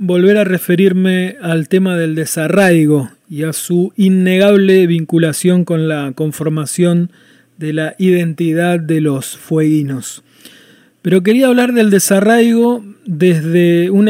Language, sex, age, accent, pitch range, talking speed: Spanish, male, 30-49, Argentinian, 160-190 Hz, 120 wpm